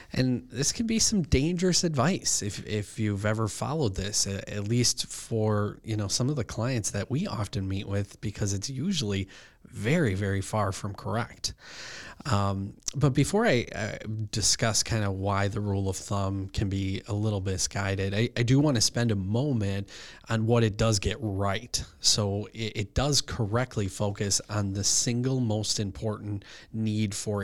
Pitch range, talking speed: 100-120 Hz, 175 wpm